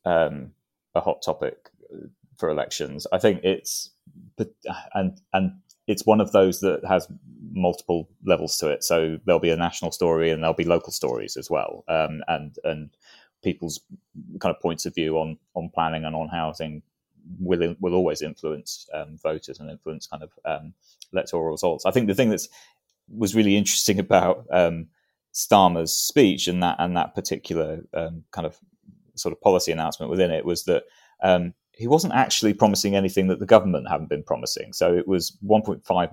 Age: 20-39